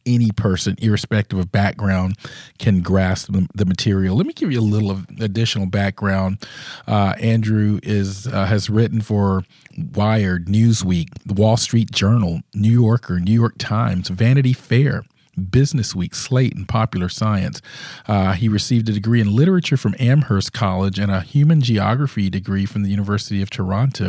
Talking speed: 160 wpm